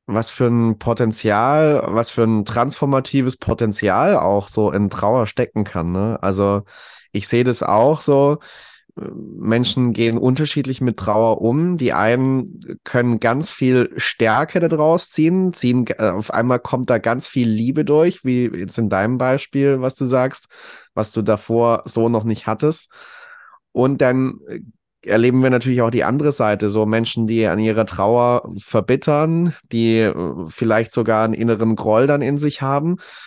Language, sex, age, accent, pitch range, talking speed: German, male, 30-49, German, 110-140 Hz, 155 wpm